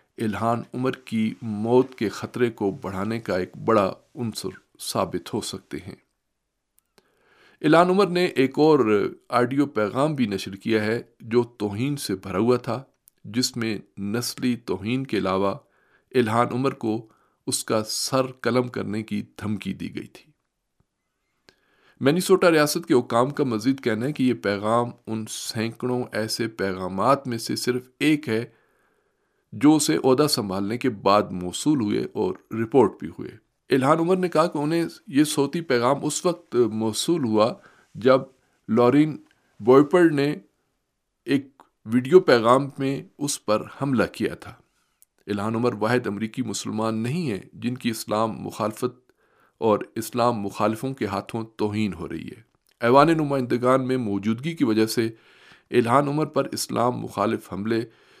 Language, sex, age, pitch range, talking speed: Urdu, male, 50-69, 110-140 Hz, 145 wpm